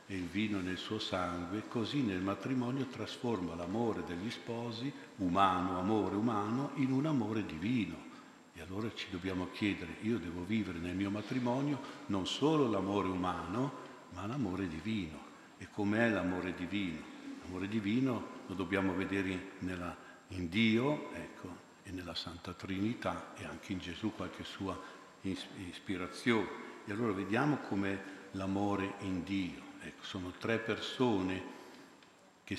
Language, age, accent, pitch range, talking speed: Italian, 60-79, native, 95-115 Hz, 135 wpm